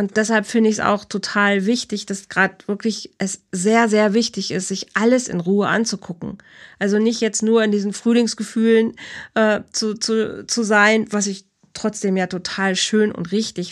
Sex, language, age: female, German, 40-59